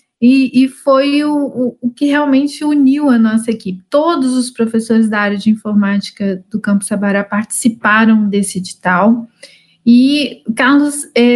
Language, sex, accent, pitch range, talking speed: Portuguese, female, Brazilian, 215-270 Hz, 135 wpm